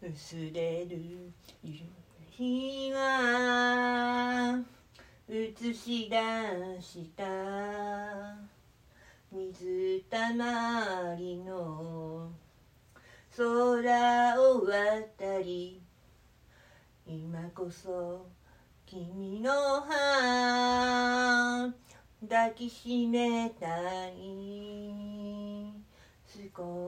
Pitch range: 200-270 Hz